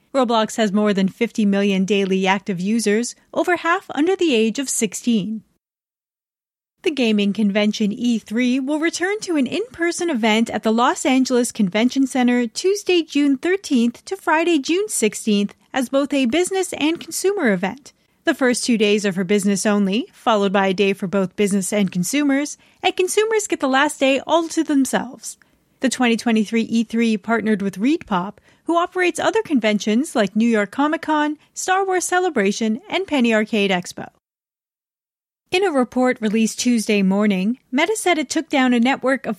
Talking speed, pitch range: 165 wpm, 210-305 Hz